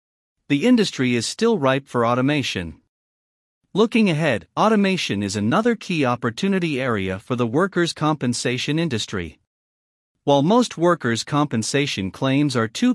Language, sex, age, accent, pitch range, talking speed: English, male, 50-69, American, 115-175 Hz, 125 wpm